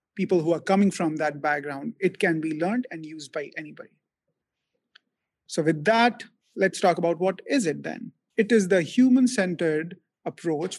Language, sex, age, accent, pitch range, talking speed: English, male, 30-49, Indian, 165-220 Hz, 165 wpm